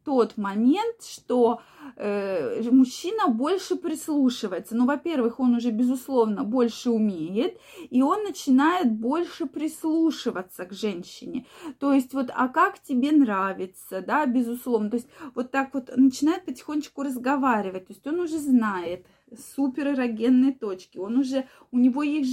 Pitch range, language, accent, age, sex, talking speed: 230-290 Hz, Russian, native, 20-39, female, 135 wpm